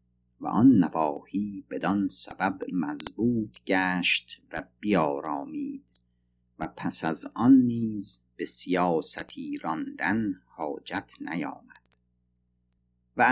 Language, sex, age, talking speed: Persian, male, 50-69, 90 wpm